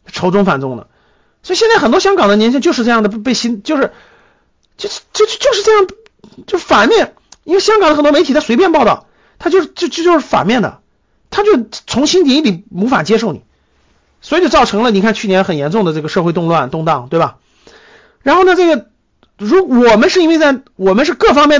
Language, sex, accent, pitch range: Chinese, male, native, 190-300 Hz